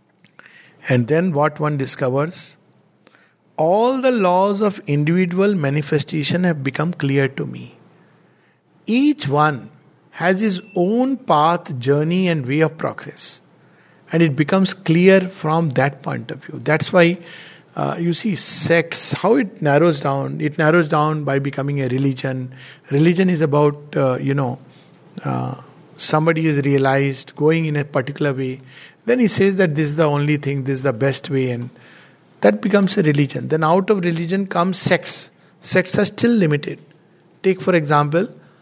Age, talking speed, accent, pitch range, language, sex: 50-69, 155 wpm, Indian, 145-185 Hz, English, male